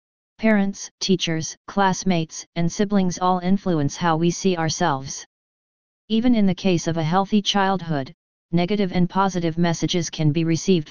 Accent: American